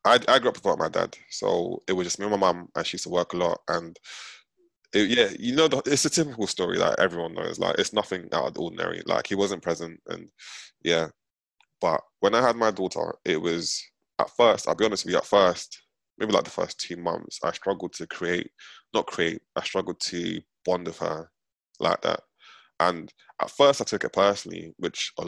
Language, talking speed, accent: English, 220 wpm, British